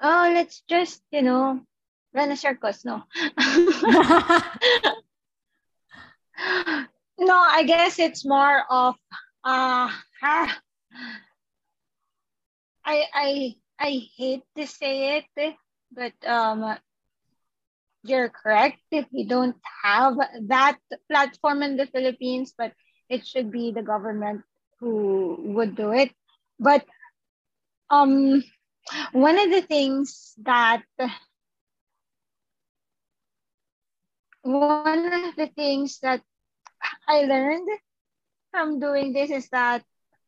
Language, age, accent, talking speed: English, 20-39, Filipino, 95 wpm